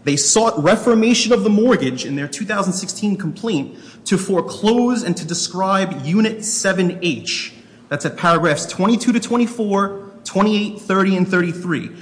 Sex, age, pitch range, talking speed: male, 30-49, 155-225 Hz, 135 wpm